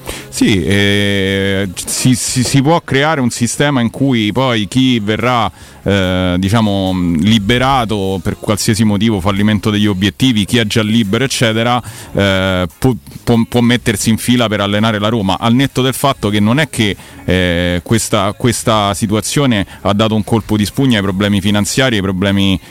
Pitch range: 100-115 Hz